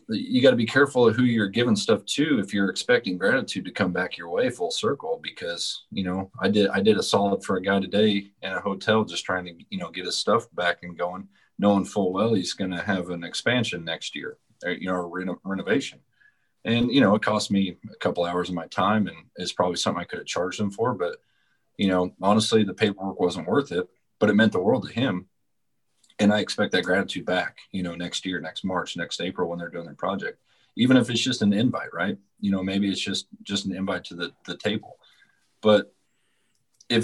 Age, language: 30-49, English